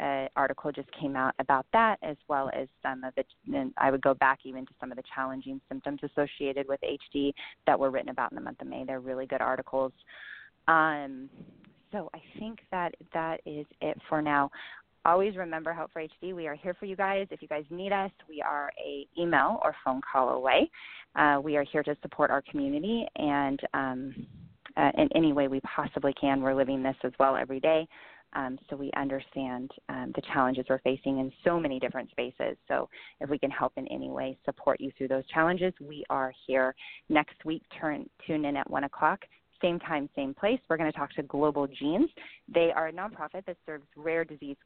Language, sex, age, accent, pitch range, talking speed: English, female, 20-39, American, 135-165 Hz, 210 wpm